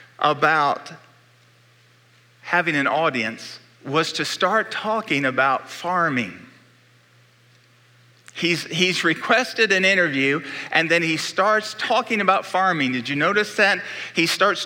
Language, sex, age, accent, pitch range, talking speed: English, male, 50-69, American, 135-185 Hz, 115 wpm